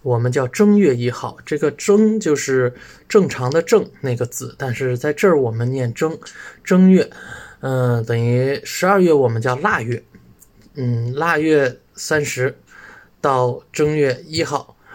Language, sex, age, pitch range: Russian, male, 20-39, 120-145 Hz